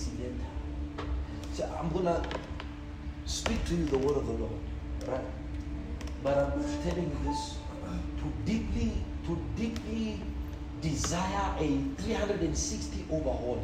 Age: 50-69